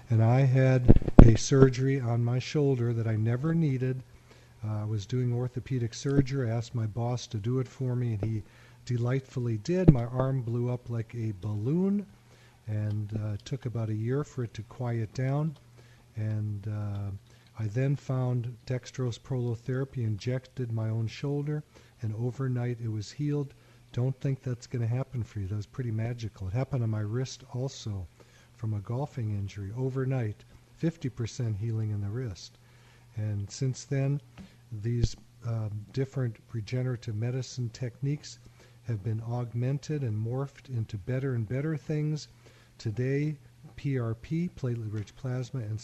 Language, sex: English, male